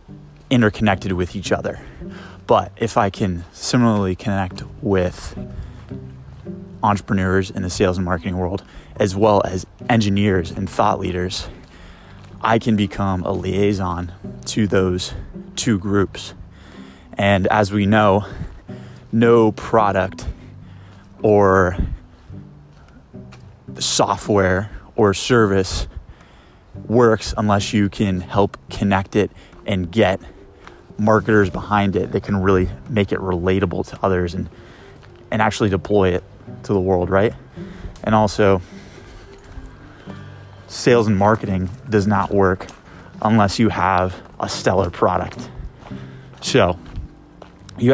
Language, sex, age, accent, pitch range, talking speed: English, male, 20-39, American, 95-105 Hz, 110 wpm